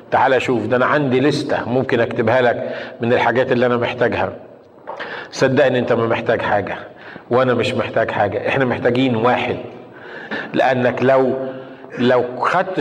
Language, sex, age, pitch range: Arabic, male, 50-69, 125-155 Hz